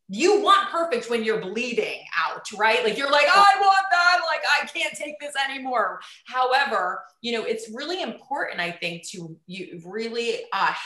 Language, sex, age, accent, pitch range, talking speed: English, female, 30-49, American, 185-260 Hz, 180 wpm